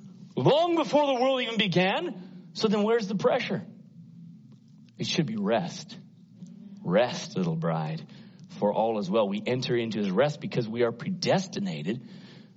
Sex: male